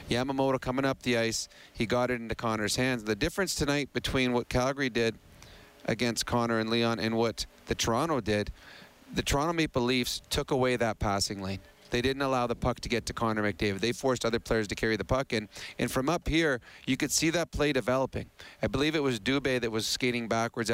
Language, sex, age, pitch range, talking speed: English, male, 40-59, 115-140 Hz, 215 wpm